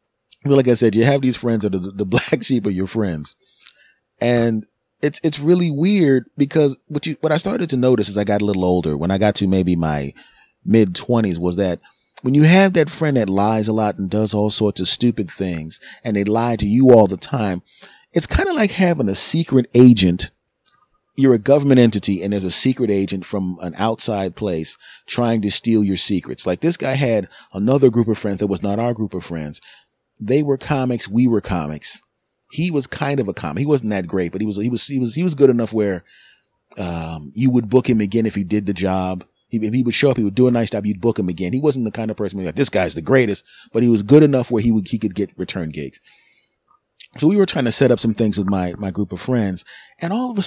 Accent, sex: American, male